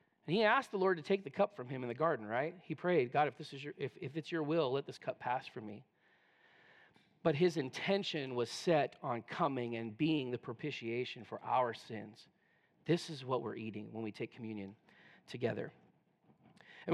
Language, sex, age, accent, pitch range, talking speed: English, male, 40-59, American, 160-205 Hz, 205 wpm